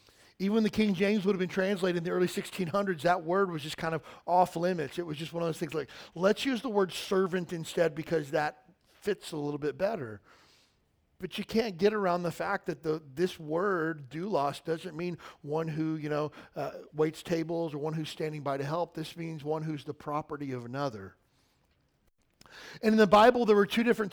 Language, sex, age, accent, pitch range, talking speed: English, male, 40-59, American, 160-200 Hz, 215 wpm